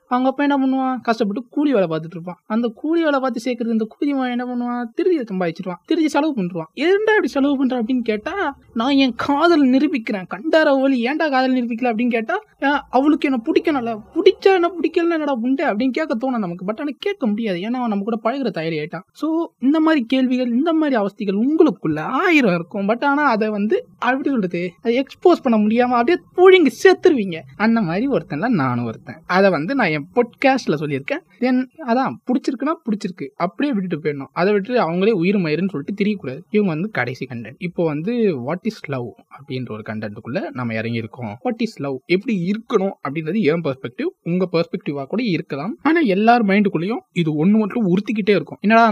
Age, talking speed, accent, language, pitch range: 20-39, 115 wpm, native, Tamil, 170-265 Hz